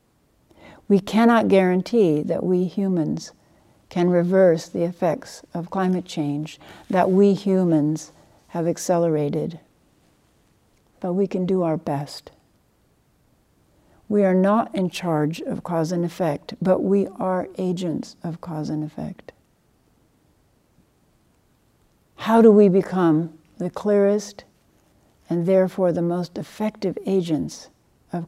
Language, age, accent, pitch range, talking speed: English, 60-79, American, 160-190 Hz, 115 wpm